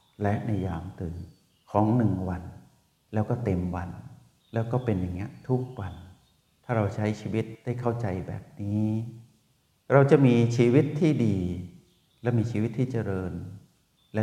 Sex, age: male, 60-79